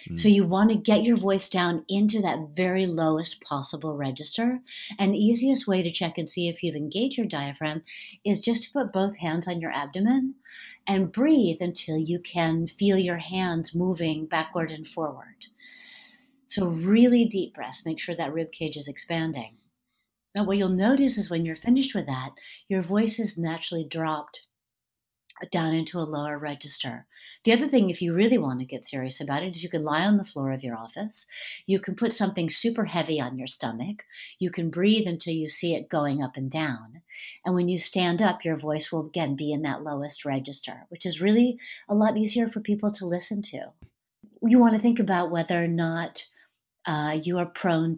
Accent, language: American, English